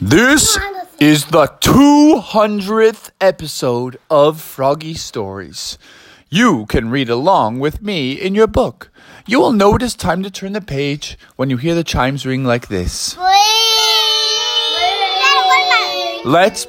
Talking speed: 130 wpm